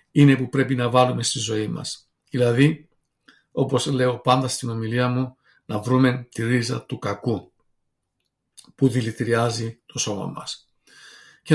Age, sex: 50-69, male